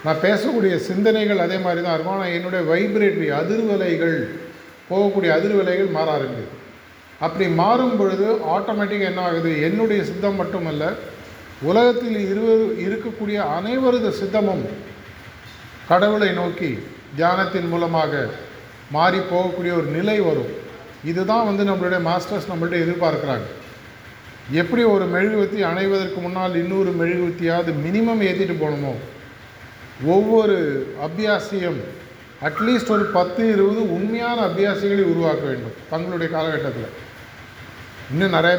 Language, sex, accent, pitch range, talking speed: Tamil, male, native, 155-200 Hz, 105 wpm